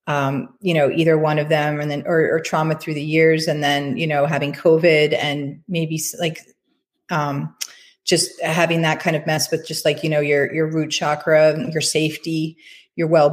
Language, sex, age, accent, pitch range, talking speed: English, female, 30-49, American, 150-165 Hz, 200 wpm